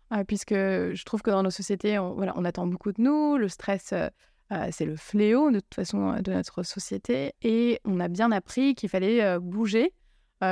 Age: 20-39